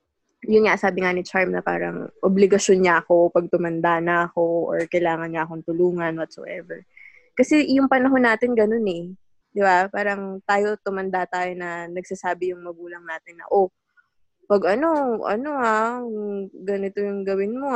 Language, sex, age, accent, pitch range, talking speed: Filipino, female, 20-39, native, 175-220 Hz, 165 wpm